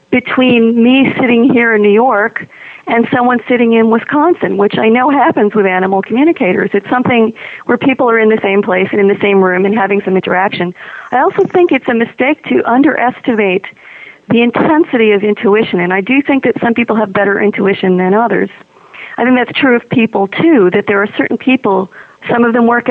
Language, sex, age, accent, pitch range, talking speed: English, female, 50-69, American, 205-255 Hz, 200 wpm